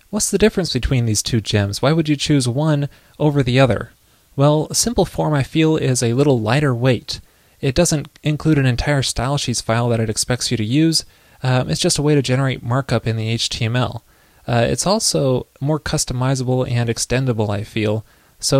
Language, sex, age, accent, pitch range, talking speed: English, male, 20-39, American, 115-150 Hz, 190 wpm